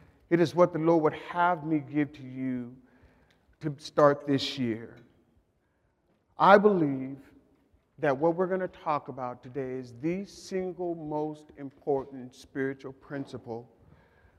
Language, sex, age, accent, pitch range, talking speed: English, male, 50-69, American, 120-170 Hz, 130 wpm